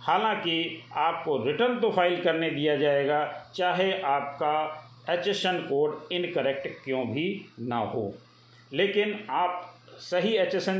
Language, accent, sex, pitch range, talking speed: Hindi, native, male, 145-190 Hz, 115 wpm